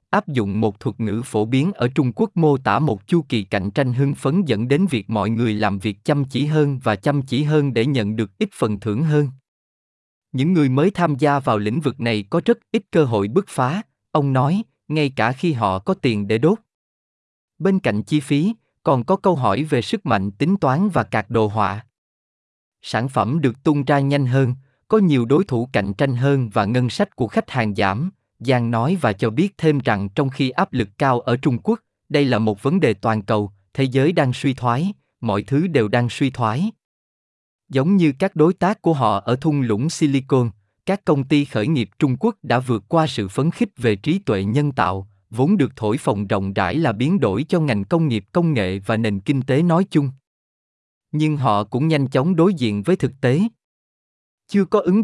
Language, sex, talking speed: Vietnamese, male, 220 wpm